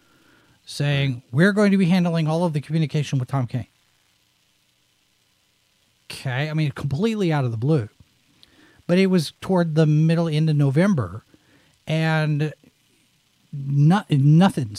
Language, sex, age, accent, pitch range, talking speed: English, male, 40-59, American, 130-165 Hz, 130 wpm